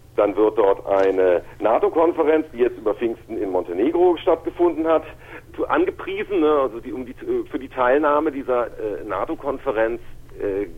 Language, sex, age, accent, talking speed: German, male, 50-69, German, 145 wpm